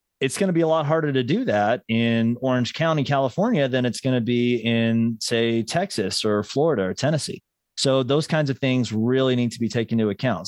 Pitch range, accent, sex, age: 110-135 Hz, American, male, 30-49